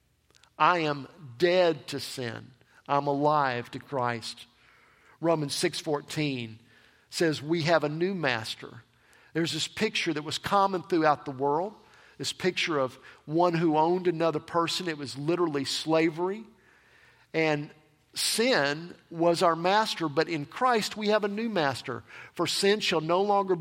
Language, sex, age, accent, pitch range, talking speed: English, male, 50-69, American, 150-195 Hz, 140 wpm